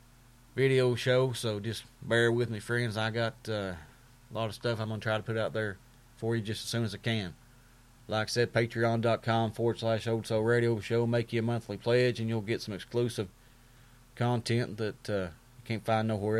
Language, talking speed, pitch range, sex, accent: English, 210 wpm, 110-120 Hz, male, American